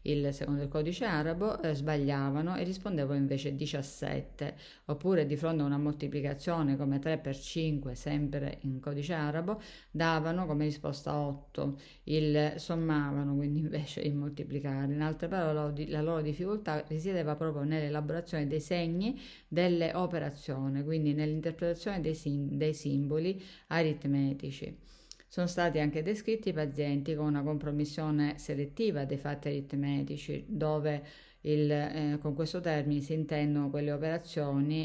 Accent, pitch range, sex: native, 145-160 Hz, female